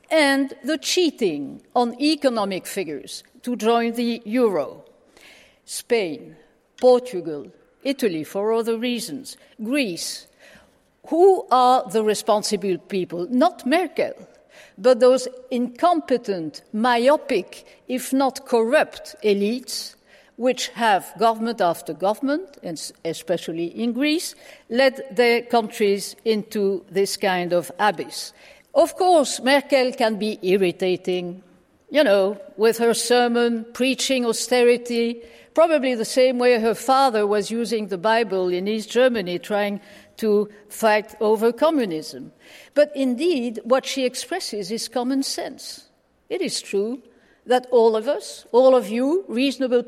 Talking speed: 120 wpm